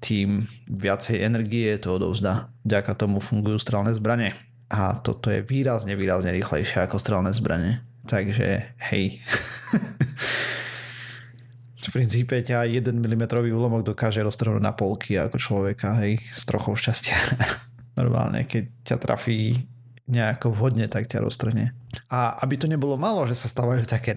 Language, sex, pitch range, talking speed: Slovak, male, 110-125 Hz, 135 wpm